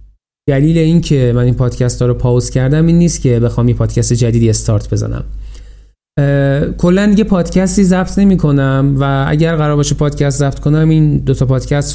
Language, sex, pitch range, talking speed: Persian, male, 120-165 Hz, 175 wpm